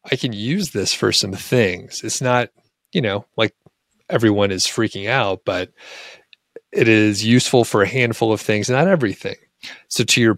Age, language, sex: 30-49, English, male